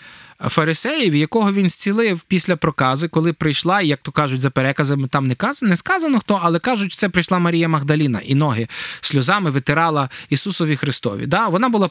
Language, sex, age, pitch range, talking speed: Ukrainian, male, 20-39, 145-195 Hz, 175 wpm